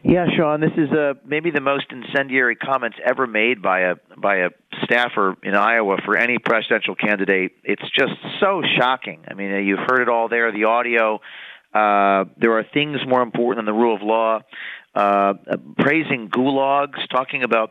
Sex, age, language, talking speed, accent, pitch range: male, 40-59, English, 175 wpm, American, 110-150 Hz